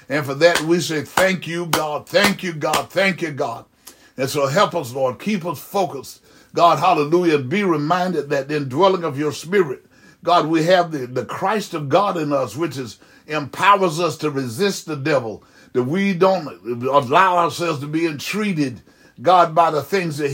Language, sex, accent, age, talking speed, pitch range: English, male, American, 60-79, 185 wpm, 145-180 Hz